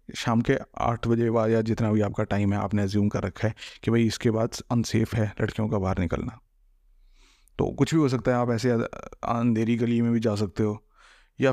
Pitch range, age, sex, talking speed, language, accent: 105-125 Hz, 30-49, male, 220 wpm, Hindi, native